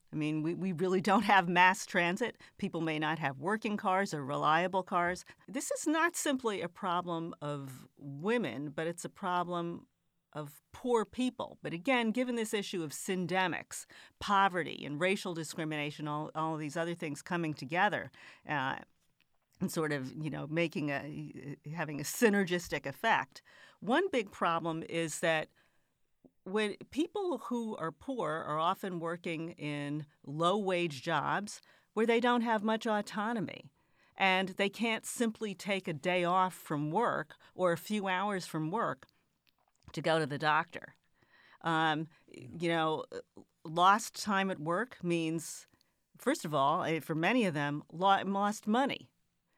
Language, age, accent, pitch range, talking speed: English, 40-59, American, 160-210 Hz, 150 wpm